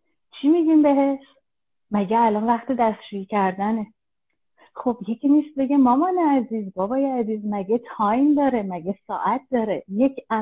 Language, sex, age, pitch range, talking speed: Persian, female, 30-49, 220-280 Hz, 130 wpm